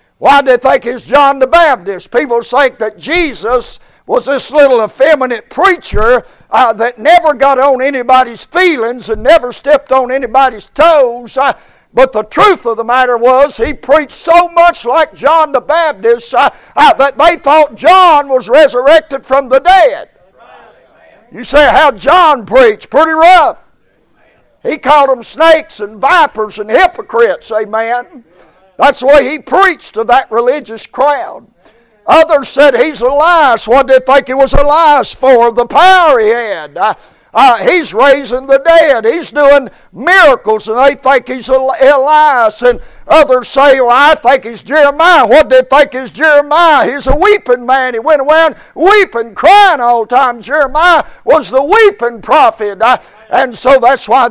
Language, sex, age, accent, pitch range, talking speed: English, male, 60-79, American, 245-315 Hz, 160 wpm